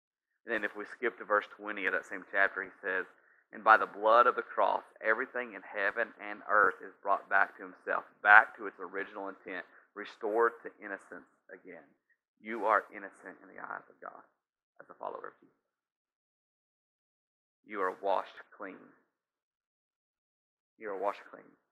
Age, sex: 40-59, male